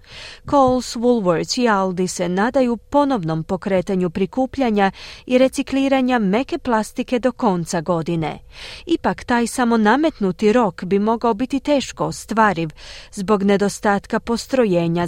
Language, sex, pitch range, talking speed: Croatian, female, 185-260 Hz, 115 wpm